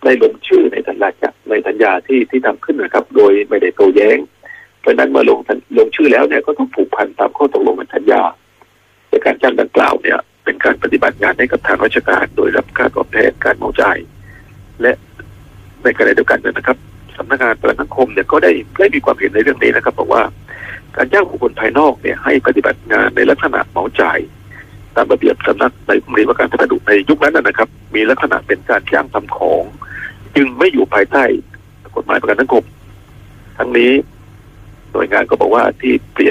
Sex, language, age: male, Thai, 60-79